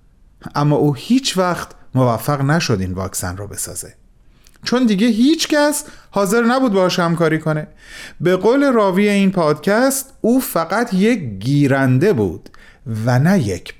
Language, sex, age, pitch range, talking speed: Persian, male, 30-49, 125-175 Hz, 140 wpm